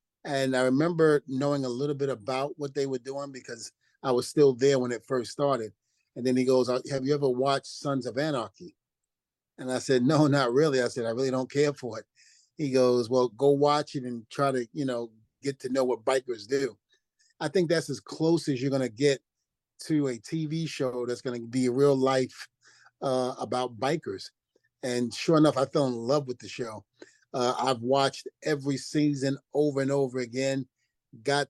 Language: English